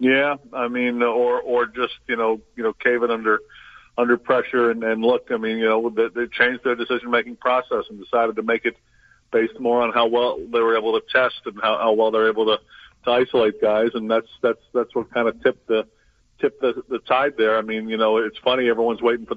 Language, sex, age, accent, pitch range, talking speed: English, male, 50-69, American, 110-125 Hz, 240 wpm